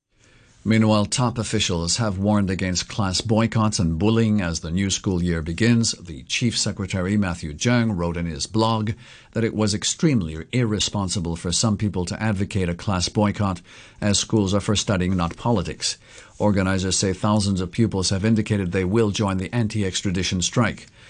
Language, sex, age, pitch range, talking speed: English, male, 50-69, 95-140 Hz, 165 wpm